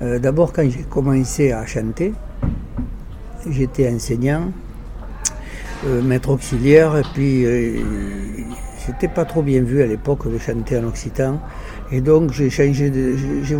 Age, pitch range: 60-79, 125-150 Hz